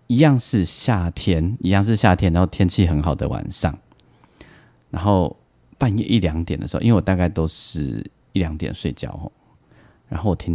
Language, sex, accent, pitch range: Chinese, male, native, 85-110 Hz